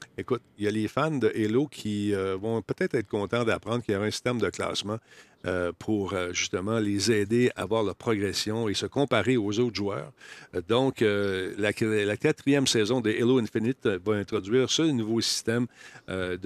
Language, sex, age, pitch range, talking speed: French, male, 50-69, 105-125 Hz, 190 wpm